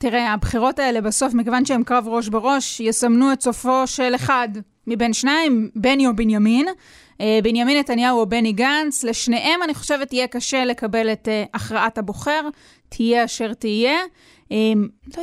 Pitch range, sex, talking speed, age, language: 225-275 Hz, female, 145 wpm, 20-39, Hebrew